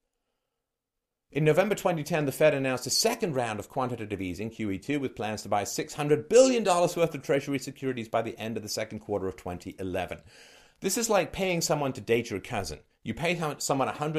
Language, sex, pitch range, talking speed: English, male, 105-150 Hz, 185 wpm